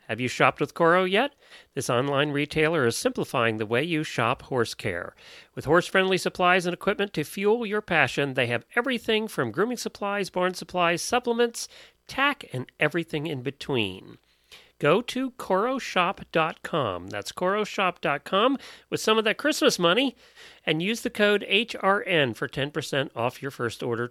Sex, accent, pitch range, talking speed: male, American, 130-200 Hz, 155 wpm